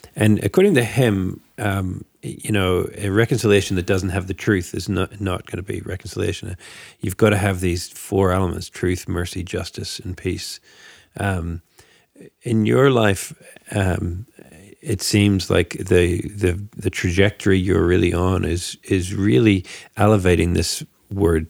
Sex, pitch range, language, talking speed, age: male, 90-105 Hz, English, 150 wpm, 40-59